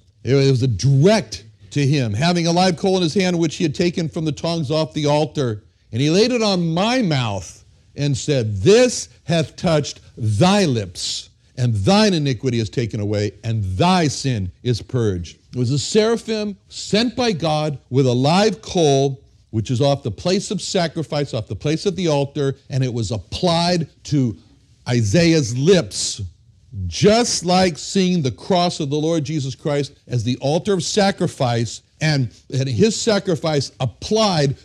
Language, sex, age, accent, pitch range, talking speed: English, male, 60-79, American, 120-180 Hz, 170 wpm